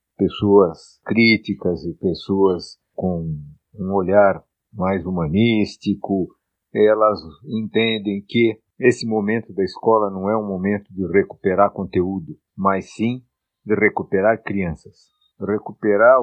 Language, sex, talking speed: Portuguese, male, 105 wpm